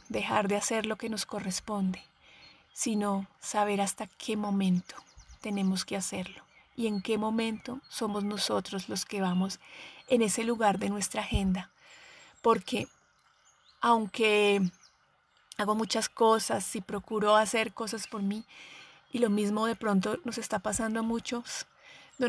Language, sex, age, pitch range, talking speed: Spanish, female, 30-49, 200-230 Hz, 140 wpm